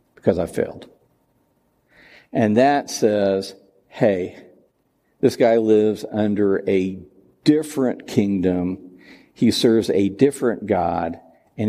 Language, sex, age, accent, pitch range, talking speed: English, male, 50-69, American, 100-125 Hz, 105 wpm